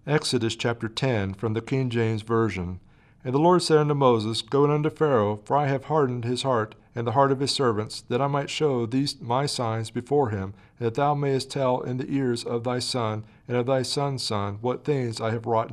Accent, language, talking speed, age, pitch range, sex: American, English, 220 wpm, 50-69, 115-145 Hz, male